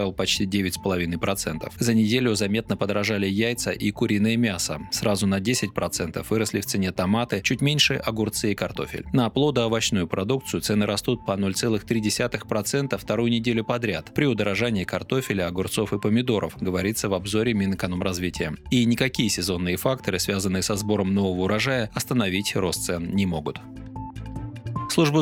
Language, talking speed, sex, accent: Russian, 135 wpm, male, native